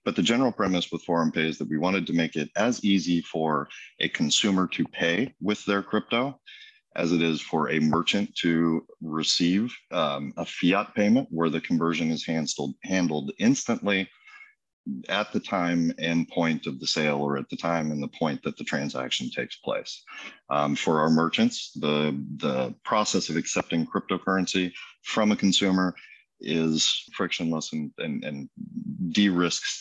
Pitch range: 80-95 Hz